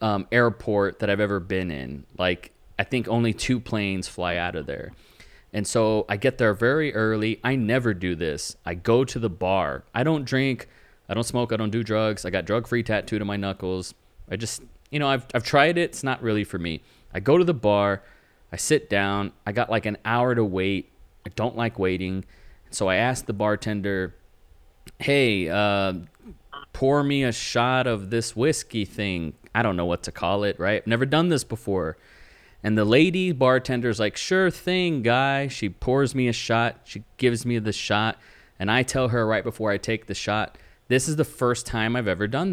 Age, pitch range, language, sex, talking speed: 30-49, 100-125 Hz, English, male, 205 wpm